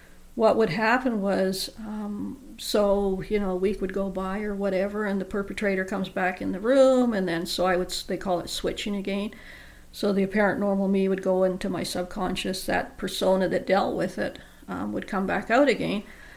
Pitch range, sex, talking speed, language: 185-210 Hz, female, 200 wpm, English